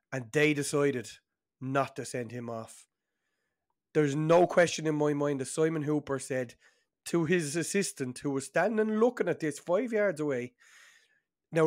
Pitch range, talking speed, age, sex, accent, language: 125-155 Hz, 165 wpm, 20-39, male, Irish, English